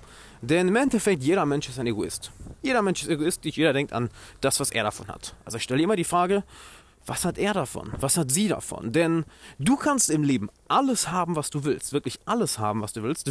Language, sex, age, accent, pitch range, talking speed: German, male, 30-49, German, 125-170 Hz, 230 wpm